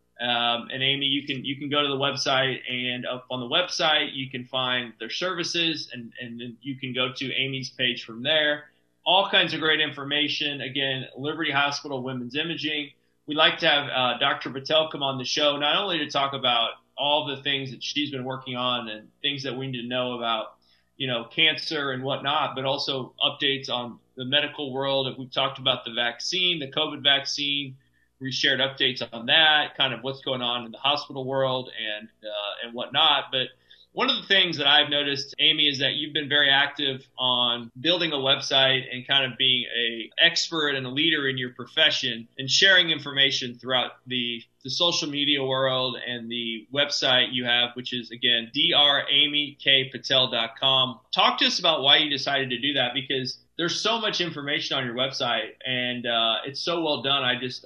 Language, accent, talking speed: English, American, 195 wpm